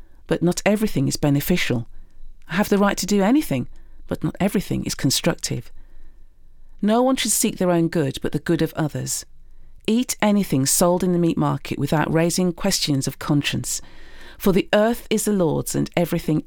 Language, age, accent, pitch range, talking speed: English, 40-59, British, 145-200 Hz, 180 wpm